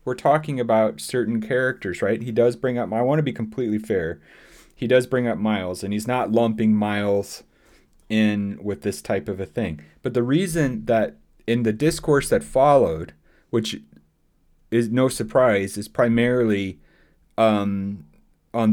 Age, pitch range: 30-49, 100-130 Hz